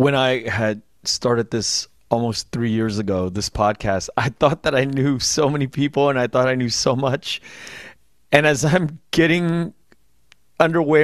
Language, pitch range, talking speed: English, 110-135 Hz, 170 wpm